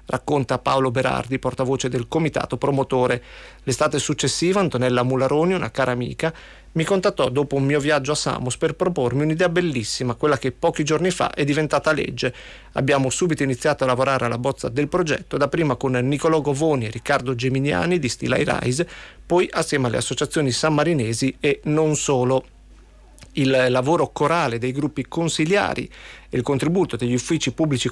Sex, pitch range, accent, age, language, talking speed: male, 130-160 Hz, native, 40-59, Italian, 155 wpm